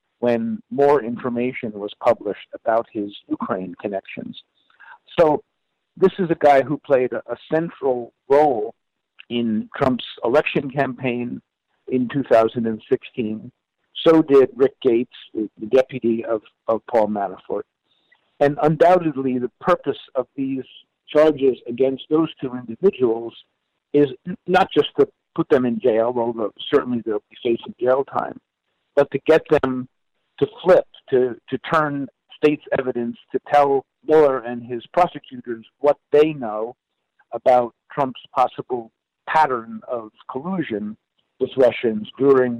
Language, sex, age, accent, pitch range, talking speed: English, male, 50-69, American, 115-155 Hz, 130 wpm